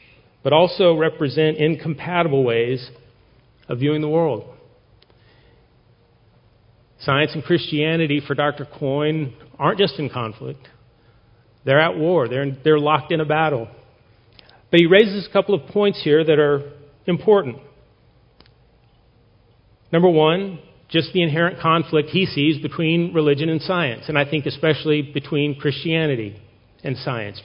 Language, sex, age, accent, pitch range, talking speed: English, male, 40-59, American, 130-165 Hz, 130 wpm